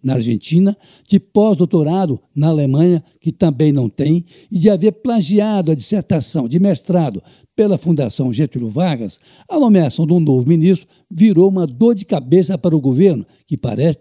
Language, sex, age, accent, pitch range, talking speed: Portuguese, male, 60-79, Brazilian, 150-195 Hz, 165 wpm